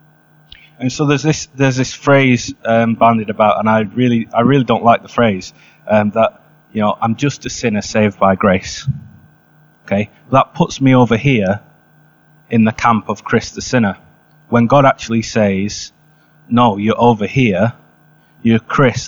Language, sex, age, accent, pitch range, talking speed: English, male, 30-49, British, 105-130 Hz, 165 wpm